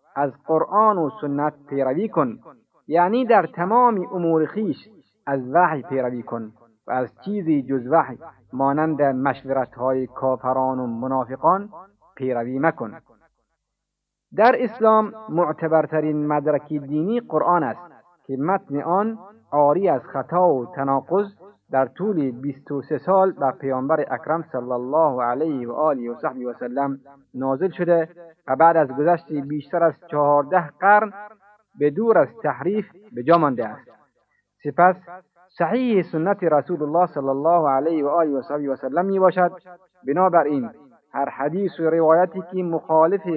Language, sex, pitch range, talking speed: Persian, male, 135-180 Hz, 130 wpm